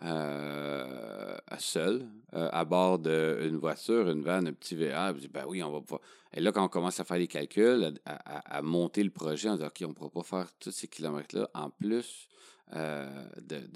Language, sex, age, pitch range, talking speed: French, male, 40-59, 80-100 Hz, 195 wpm